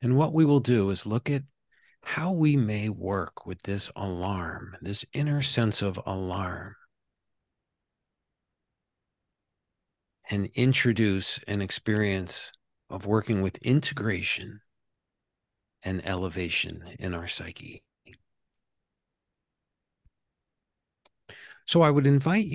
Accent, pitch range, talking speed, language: American, 95-120 Hz, 100 wpm, English